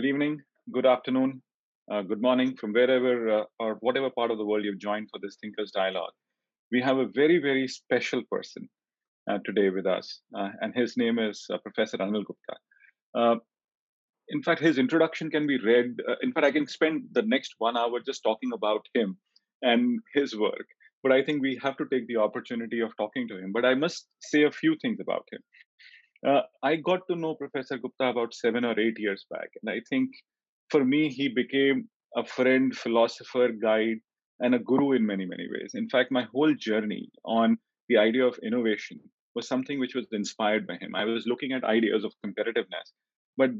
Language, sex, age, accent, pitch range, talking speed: English, male, 30-49, Indian, 110-140 Hz, 200 wpm